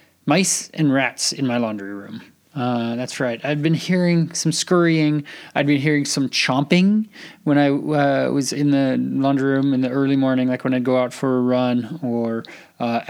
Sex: male